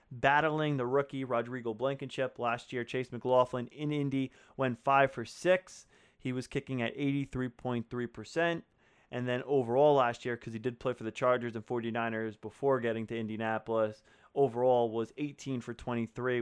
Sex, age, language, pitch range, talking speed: male, 20-39, English, 115-135 Hz, 155 wpm